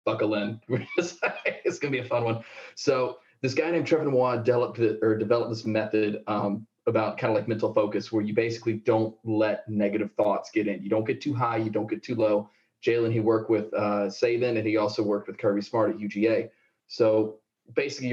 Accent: American